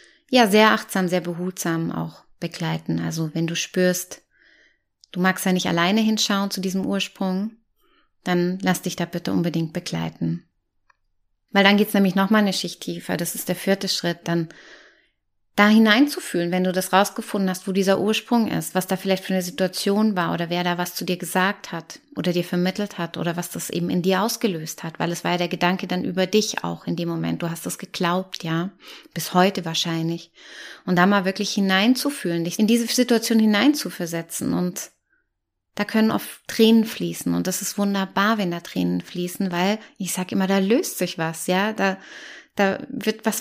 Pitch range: 170-205 Hz